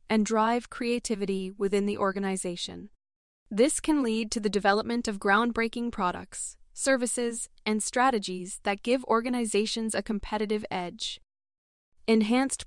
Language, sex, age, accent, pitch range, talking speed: English, female, 20-39, American, 195-230 Hz, 120 wpm